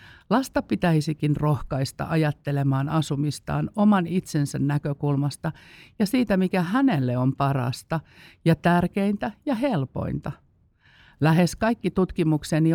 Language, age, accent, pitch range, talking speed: Finnish, 50-69, native, 145-185 Hz, 100 wpm